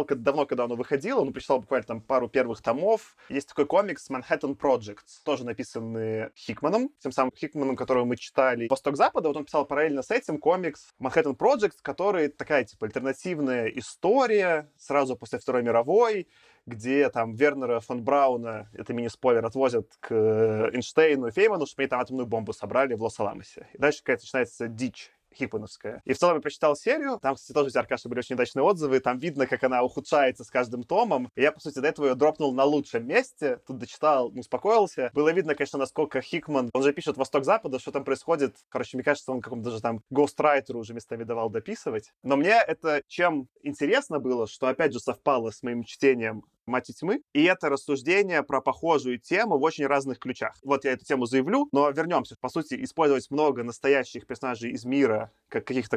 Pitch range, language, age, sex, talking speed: 125-145 Hz, Russian, 20-39, male, 190 wpm